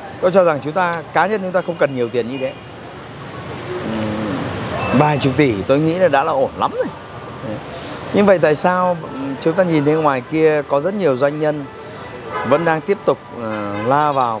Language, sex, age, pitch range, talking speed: Vietnamese, male, 30-49, 120-170 Hz, 195 wpm